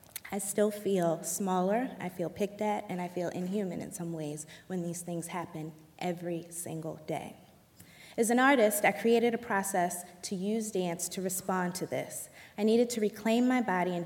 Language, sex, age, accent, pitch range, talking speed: English, female, 20-39, American, 175-215 Hz, 185 wpm